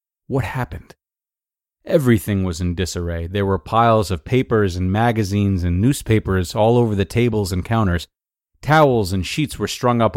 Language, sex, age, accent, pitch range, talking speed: English, male, 30-49, American, 95-125 Hz, 160 wpm